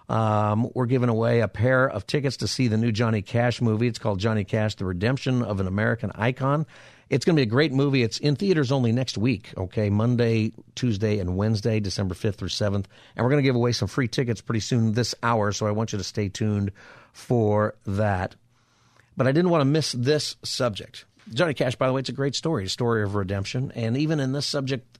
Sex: male